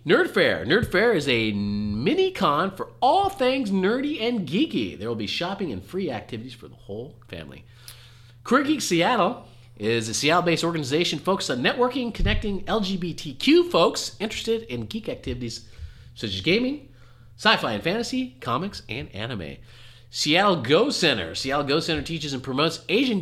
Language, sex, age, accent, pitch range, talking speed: English, male, 30-49, American, 115-195 Hz, 150 wpm